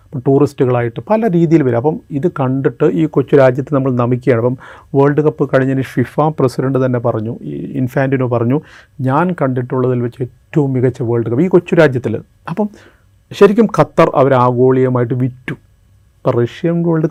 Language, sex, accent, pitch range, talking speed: Malayalam, male, native, 125-155 Hz, 140 wpm